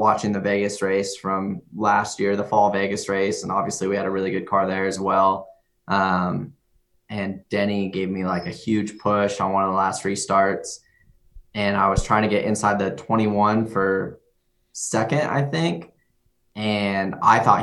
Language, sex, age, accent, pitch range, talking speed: English, male, 20-39, American, 95-105 Hz, 180 wpm